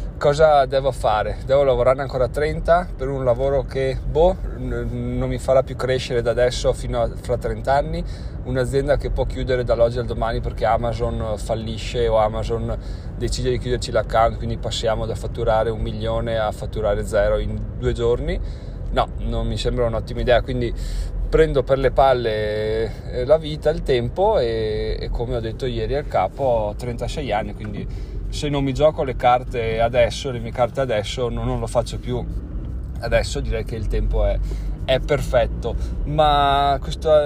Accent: native